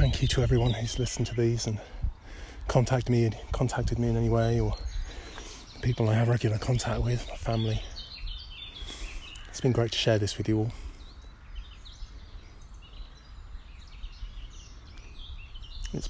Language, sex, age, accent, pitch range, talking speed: English, male, 30-49, British, 85-115 Hz, 135 wpm